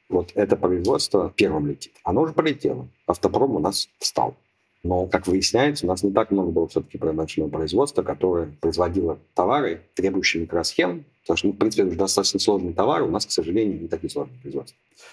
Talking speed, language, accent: 180 wpm, Russian, native